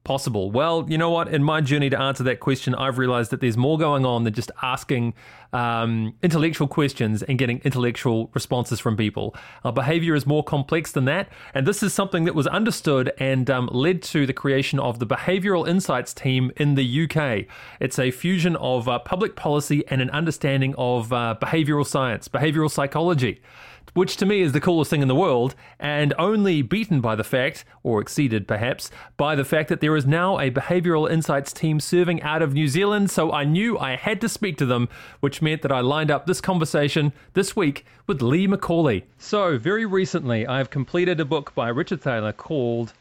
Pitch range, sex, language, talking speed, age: 130-165 Hz, male, English, 200 wpm, 30-49